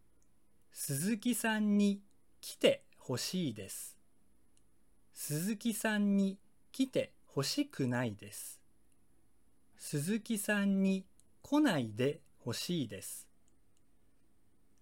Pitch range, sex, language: 125-215 Hz, male, Japanese